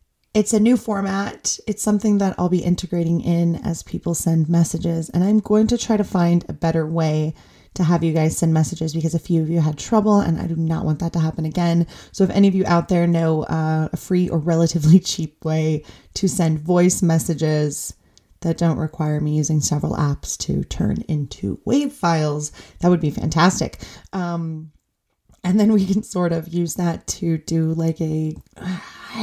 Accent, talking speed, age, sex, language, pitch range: American, 195 wpm, 30-49, female, English, 165-195 Hz